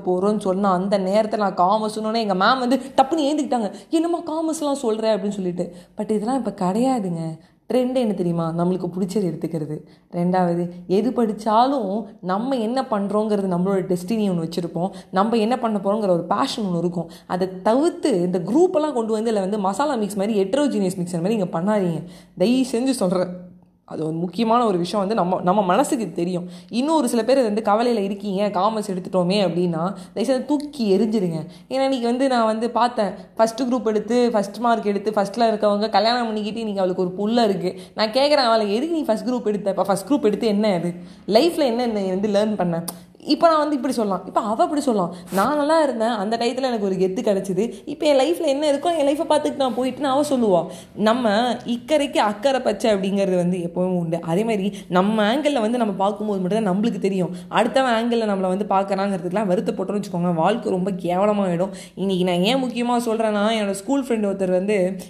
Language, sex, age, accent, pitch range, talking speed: Tamil, female, 20-39, native, 185-235 Hz, 180 wpm